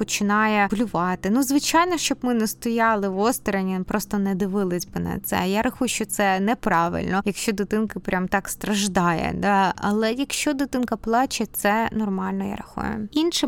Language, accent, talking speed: Ukrainian, native, 155 wpm